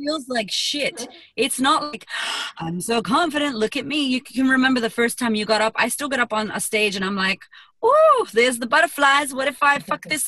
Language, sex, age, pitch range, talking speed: English, female, 30-49, 175-235 Hz, 235 wpm